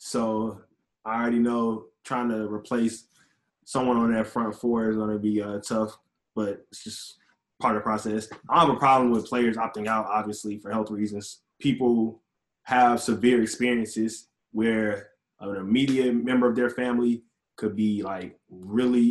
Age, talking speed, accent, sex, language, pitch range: 20-39, 165 wpm, American, male, English, 105-120 Hz